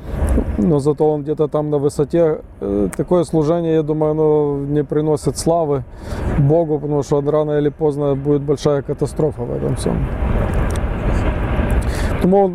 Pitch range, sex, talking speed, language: 145-165 Hz, male, 135 wpm, English